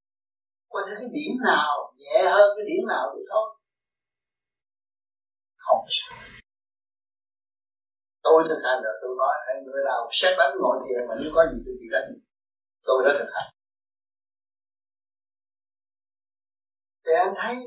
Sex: male